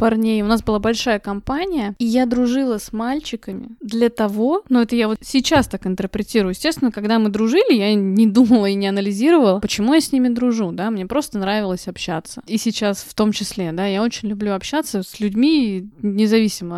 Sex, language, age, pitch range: female, Russian, 20-39, 205-250 Hz